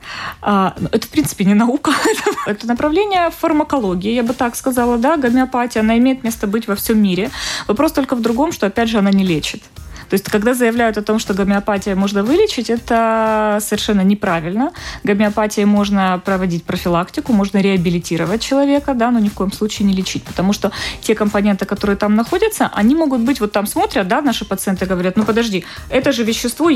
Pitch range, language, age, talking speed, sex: 195-265 Hz, Russian, 20-39, 180 wpm, female